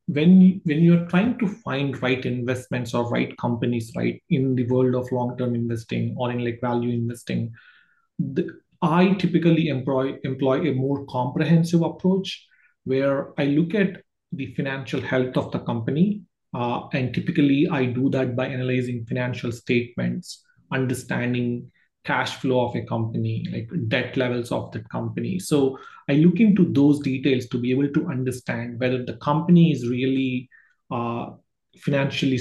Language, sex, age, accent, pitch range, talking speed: English, male, 30-49, Indian, 125-155 Hz, 150 wpm